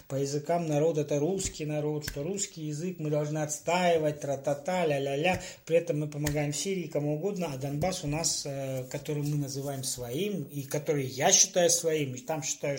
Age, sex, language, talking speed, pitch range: 20-39, male, Russian, 175 wpm, 145-195 Hz